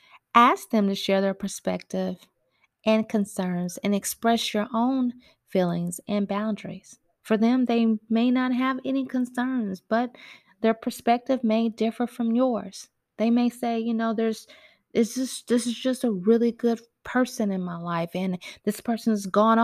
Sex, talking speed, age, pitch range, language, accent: female, 155 wpm, 30-49, 195-235 Hz, English, American